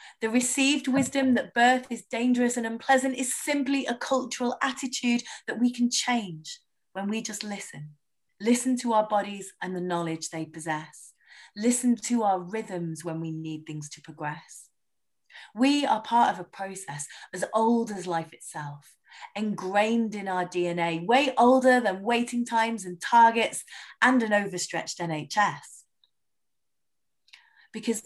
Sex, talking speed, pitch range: female, 145 wpm, 180-245 Hz